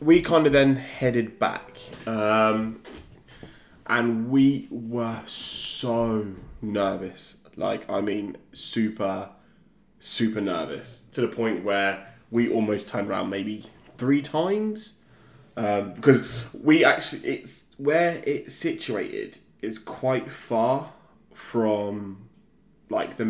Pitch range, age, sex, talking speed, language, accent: 105-135 Hz, 20-39, male, 110 wpm, English, British